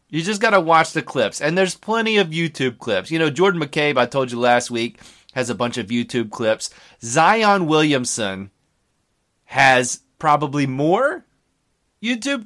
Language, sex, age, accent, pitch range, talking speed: English, male, 30-49, American, 120-190 Hz, 165 wpm